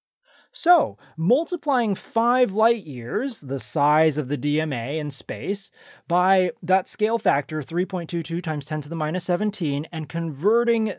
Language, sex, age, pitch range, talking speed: English, male, 30-49, 145-220 Hz, 135 wpm